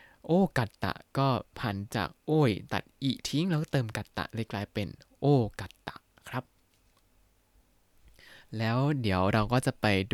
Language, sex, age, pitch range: Thai, male, 20-39, 105-150 Hz